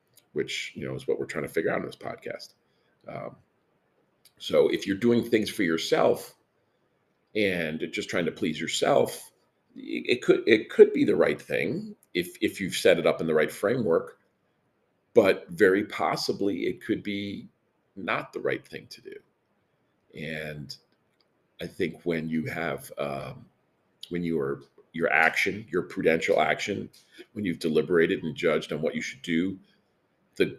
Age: 40-59